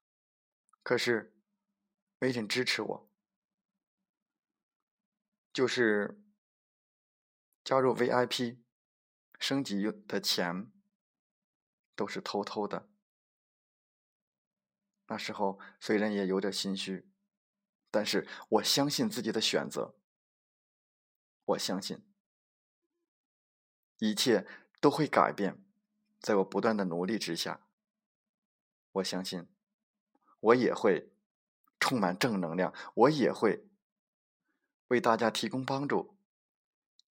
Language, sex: Chinese, male